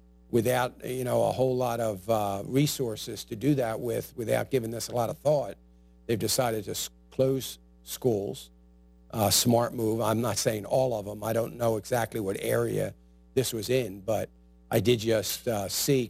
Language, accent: English, American